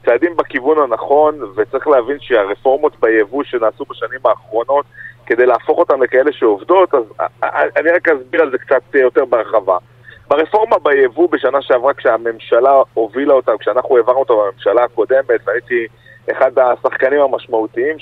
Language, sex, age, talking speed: Hebrew, male, 40-59, 135 wpm